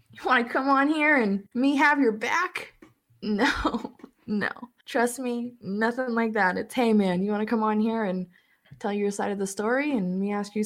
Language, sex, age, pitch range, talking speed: English, female, 20-39, 180-230 Hz, 205 wpm